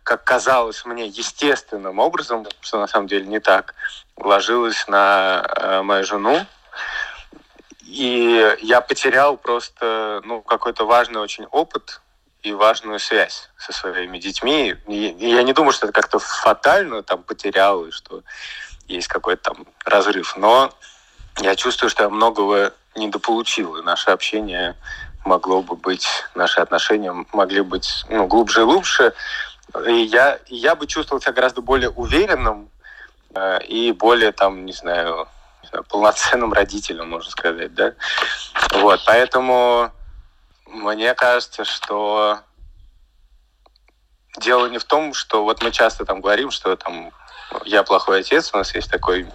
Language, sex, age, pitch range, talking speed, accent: Russian, male, 30-49, 100-125 Hz, 135 wpm, native